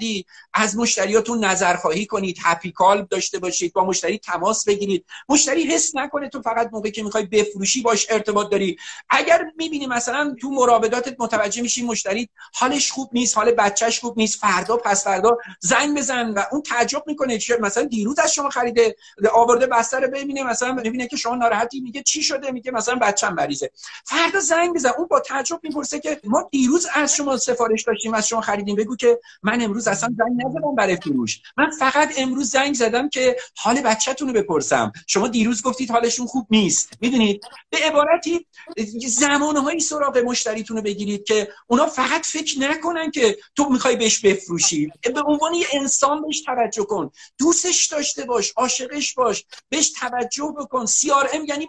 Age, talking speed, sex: 50-69, 165 wpm, male